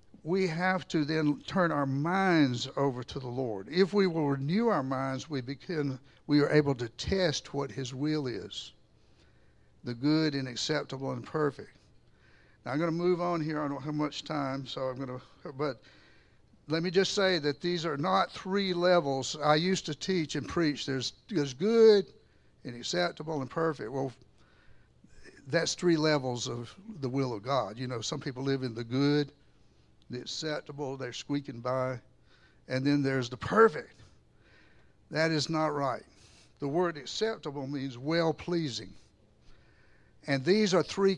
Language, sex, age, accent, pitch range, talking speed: English, male, 60-79, American, 135-170 Hz, 165 wpm